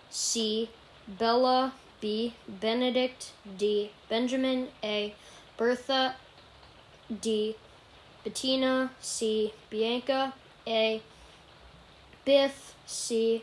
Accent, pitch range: American, 220-255 Hz